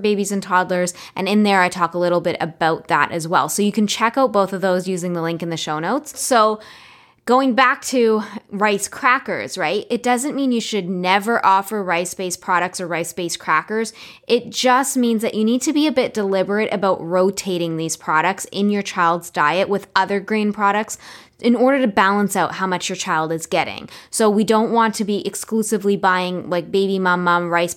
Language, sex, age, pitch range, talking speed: English, female, 10-29, 180-220 Hz, 205 wpm